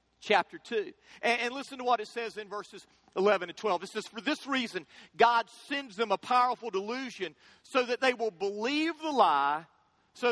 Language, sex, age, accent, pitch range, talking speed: English, male, 40-59, American, 200-260 Hz, 185 wpm